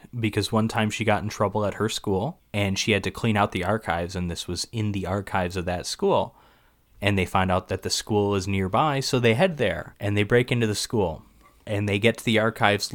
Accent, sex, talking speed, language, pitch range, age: American, male, 240 wpm, English, 90-110 Hz, 20-39